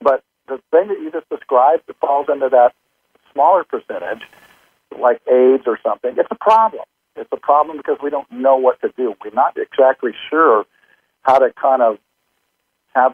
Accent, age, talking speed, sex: American, 50-69, 180 wpm, male